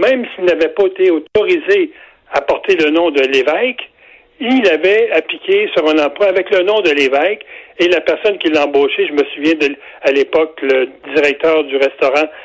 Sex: male